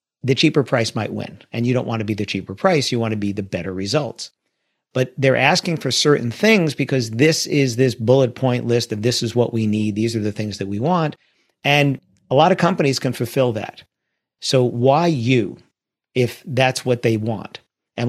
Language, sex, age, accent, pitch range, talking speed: English, male, 50-69, American, 115-135 Hz, 210 wpm